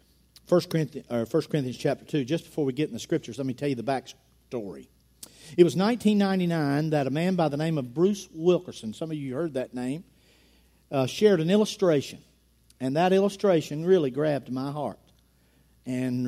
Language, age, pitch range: English, 50-69, 120-165 Hz